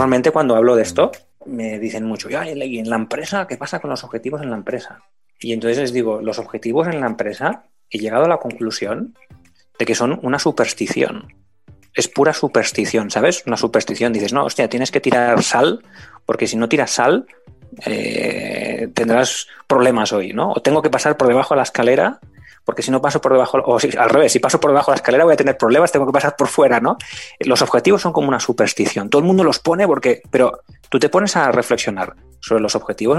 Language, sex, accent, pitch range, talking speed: Spanish, male, Spanish, 115-145 Hz, 215 wpm